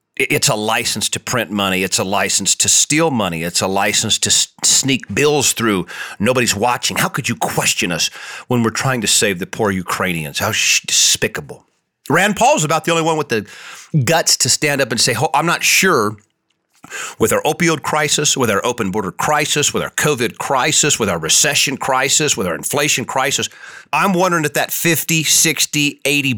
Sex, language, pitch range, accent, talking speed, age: male, English, 115-155 Hz, American, 185 wpm, 40-59